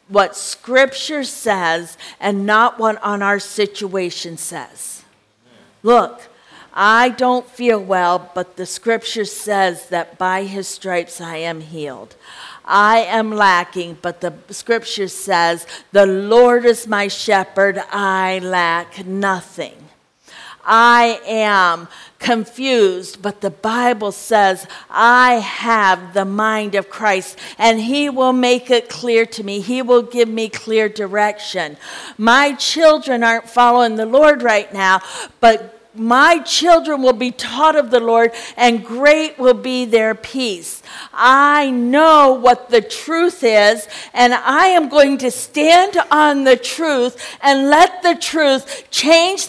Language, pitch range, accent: English, 200-255 Hz, American